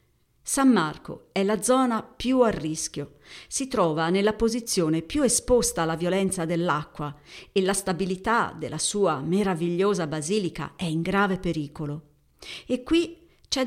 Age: 40-59